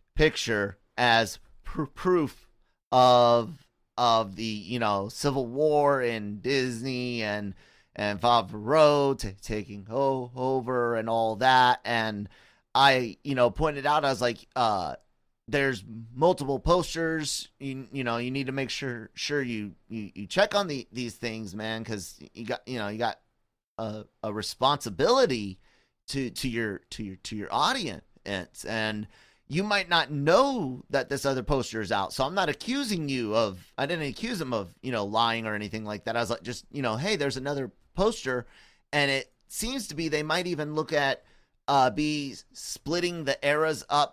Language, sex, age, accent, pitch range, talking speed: English, male, 30-49, American, 110-140 Hz, 175 wpm